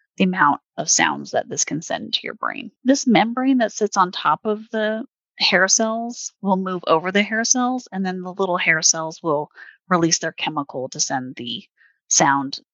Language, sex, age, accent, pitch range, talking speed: English, female, 30-49, American, 160-220 Hz, 190 wpm